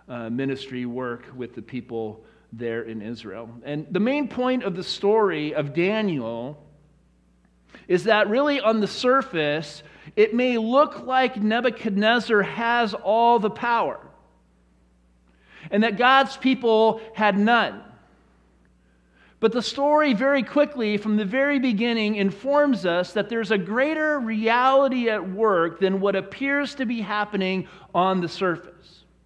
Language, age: English, 40-59